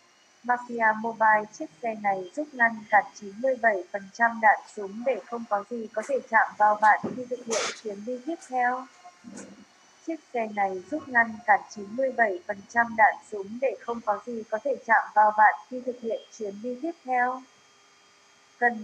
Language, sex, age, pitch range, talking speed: Vietnamese, female, 20-39, 205-255 Hz, 170 wpm